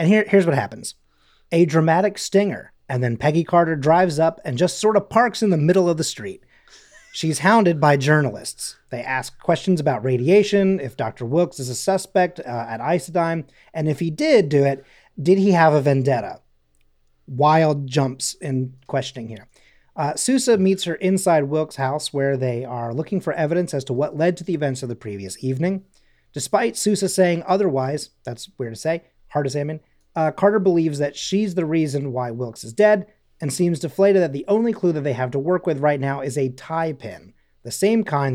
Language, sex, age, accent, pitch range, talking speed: English, male, 30-49, American, 130-180 Hz, 200 wpm